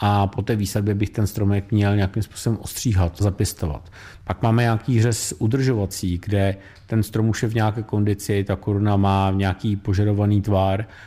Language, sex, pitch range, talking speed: Czech, male, 100-115 Hz, 170 wpm